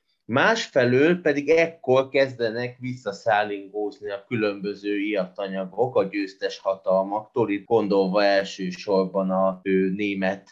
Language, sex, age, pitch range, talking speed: Hungarian, male, 30-49, 100-150 Hz, 90 wpm